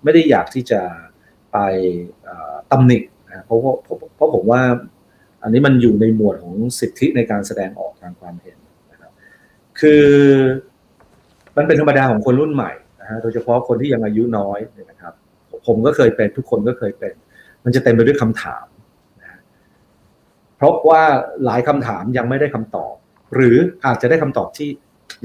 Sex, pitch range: male, 115-150 Hz